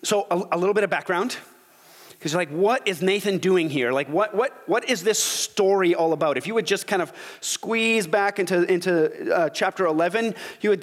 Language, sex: English, male